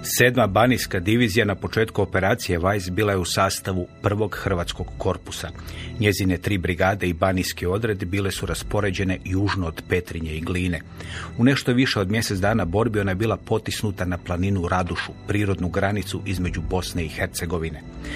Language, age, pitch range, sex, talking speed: Croatian, 40-59, 90-105 Hz, male, 155 wpm